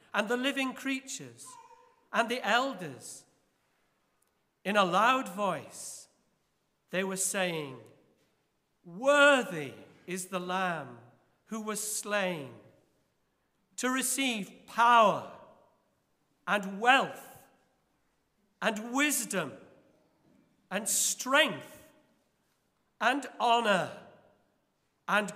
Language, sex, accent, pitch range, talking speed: English, male, British, 190-270 Hz, 80 wpm